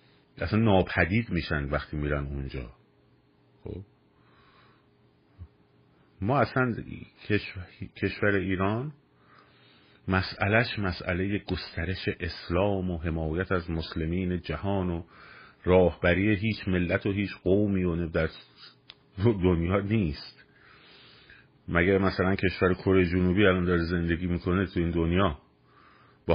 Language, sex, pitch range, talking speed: Persian, male, 85-100 Hz, 100 wpm